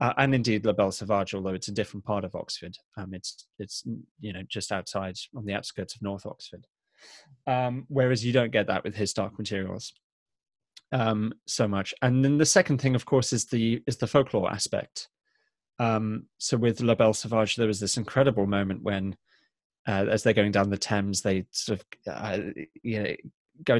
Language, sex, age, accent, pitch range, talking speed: English, male, 20-39, British, 100-115 Hz, 195 wpm